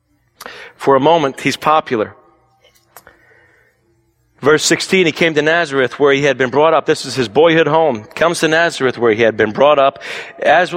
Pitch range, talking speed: 140-175 Hz, 180 wpm